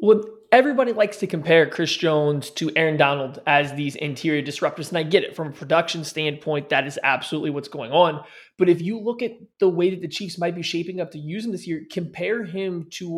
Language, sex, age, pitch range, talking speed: English, male, 20-39, 150-180 Hz, 230 wpm